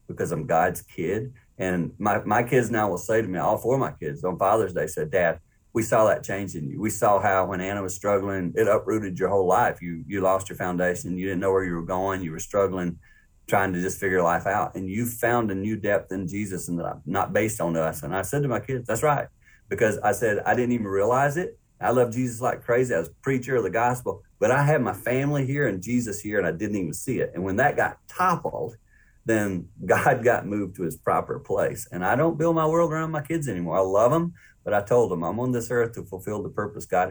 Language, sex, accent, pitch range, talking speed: English, male, American, 95-125 Hz, 255 wpm